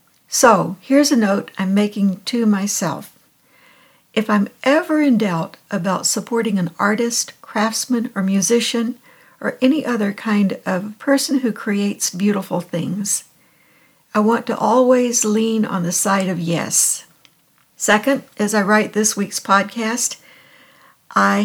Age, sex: 60-79, female